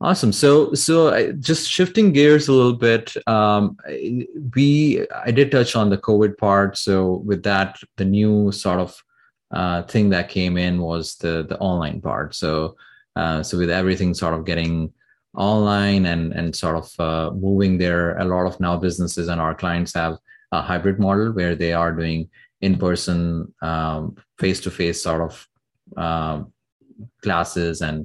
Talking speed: 160 wpm